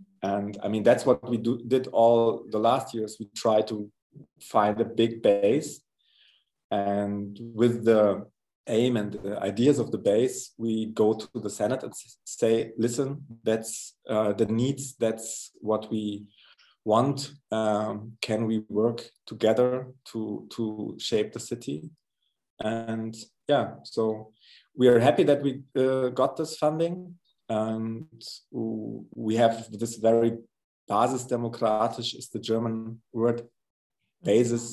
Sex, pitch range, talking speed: male, 110-120 Hz, 135 wpm